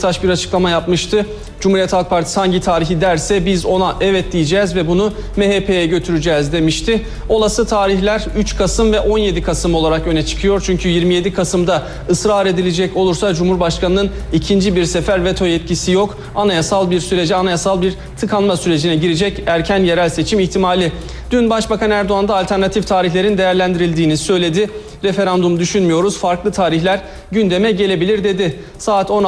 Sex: male